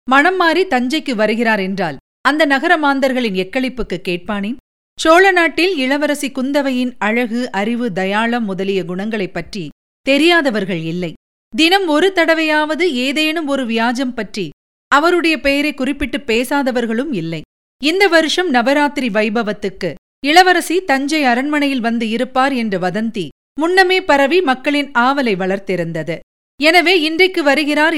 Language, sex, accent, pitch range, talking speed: Tamil, female, native, 210-300 Hz, 110 wpm